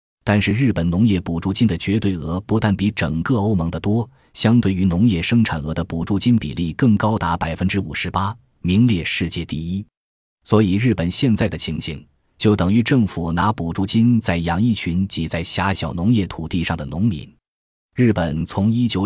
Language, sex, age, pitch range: Chinese, male, 20-39, 85-115 Hz